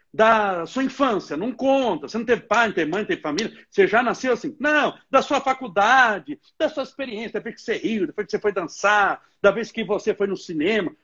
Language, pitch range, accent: Portuguese, 175-265 Hz, Brazilian